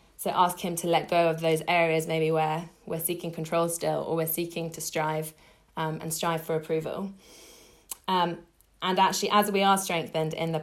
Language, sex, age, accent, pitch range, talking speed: English, female, 20-39, British, 160-180 Hz, 190 wpm